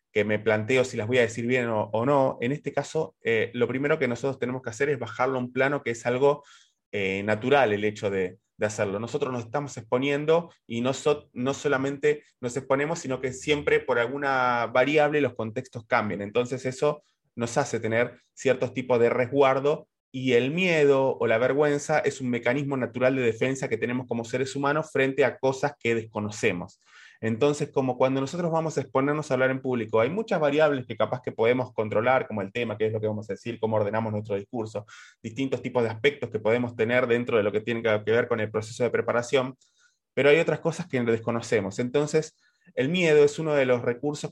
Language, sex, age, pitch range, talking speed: Spanish, male, 20-39, 115-145 Hz, 210 wpm